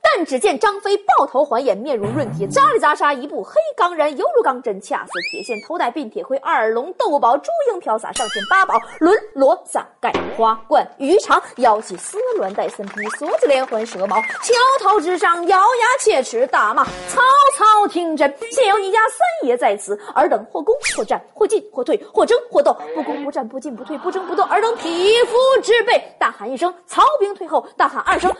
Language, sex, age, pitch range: Chinese, female, 20-39, 290-445 Hz